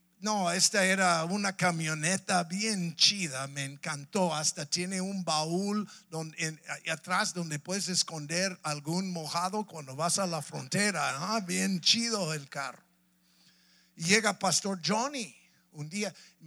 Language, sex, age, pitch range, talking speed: English, male, 50-69, 160-195 Hz, 140 wpm